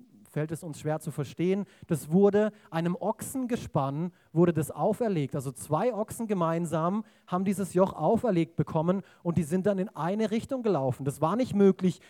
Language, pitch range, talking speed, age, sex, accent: German, 150-185 Hz, 175 wpm, 30-49, male, German